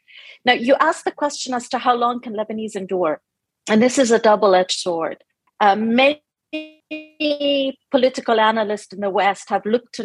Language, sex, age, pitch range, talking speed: English, female, 40-59, 210-265 Hz, 165 wpm